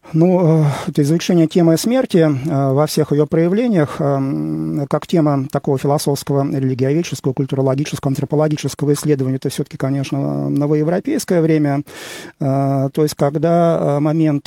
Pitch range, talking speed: 135-155 Hz, 120 wpm